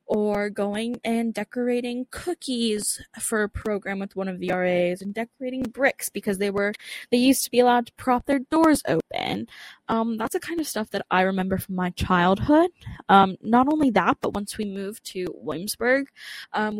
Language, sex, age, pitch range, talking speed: English, female, 10-29, 195-235 Hz, 185 wpm